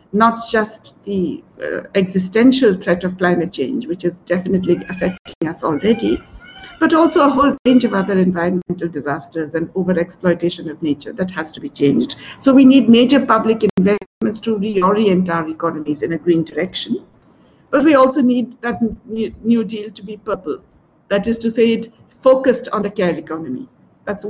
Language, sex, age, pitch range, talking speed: English, female, 60-79, 185-230 Hz, 170 wpm